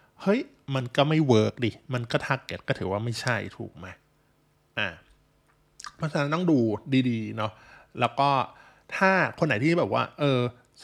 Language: Thai